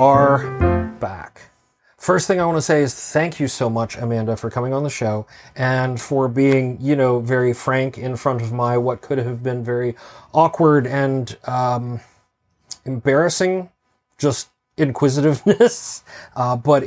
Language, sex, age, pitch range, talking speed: English, male, 30-49, 120-150 Hz, 155 wpm